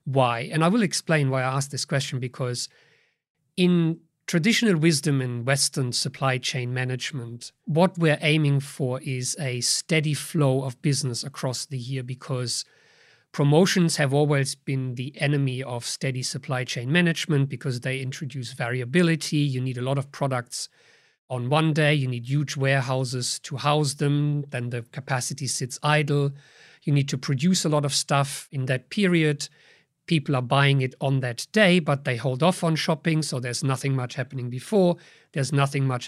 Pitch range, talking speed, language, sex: 135-160 Hz, 170 wpm, English, male